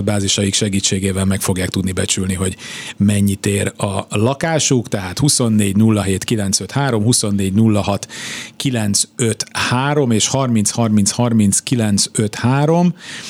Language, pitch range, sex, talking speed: Hungarian, 100-120 Hz, male, 100 wpm